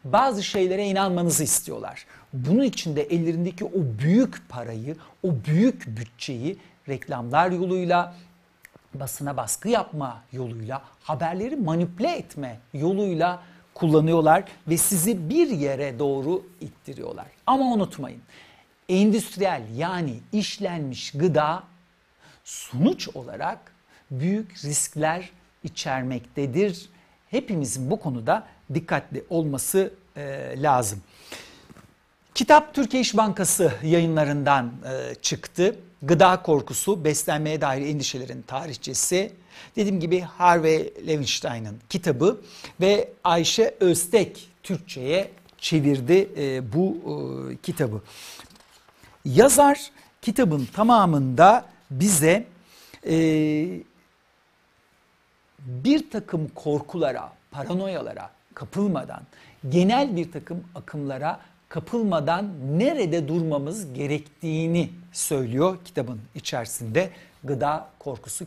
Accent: native